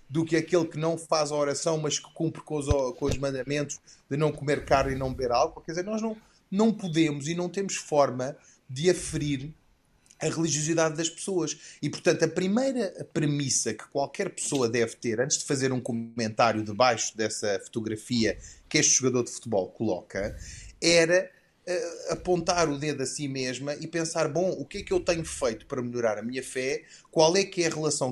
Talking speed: 195 wpm